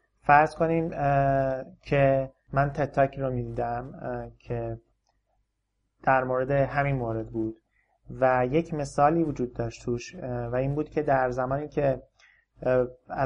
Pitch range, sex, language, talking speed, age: 125-145 Hz, male, Persian, 120 wpm, 30-49